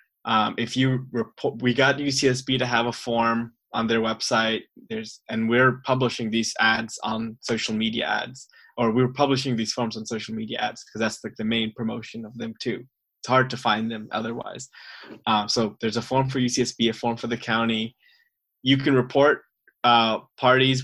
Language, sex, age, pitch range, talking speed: English, male, 20-39, 110-130 Hz, 190 wpm